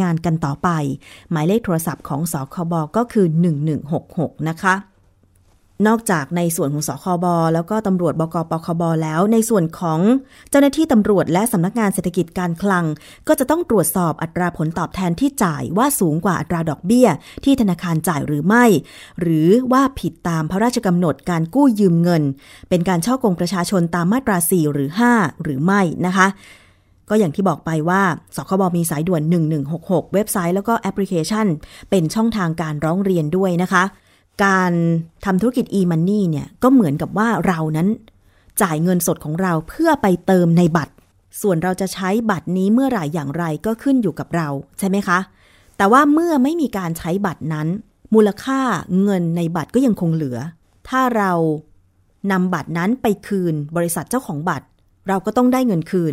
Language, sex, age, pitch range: Thai, female, 20-39, 160-205 Hz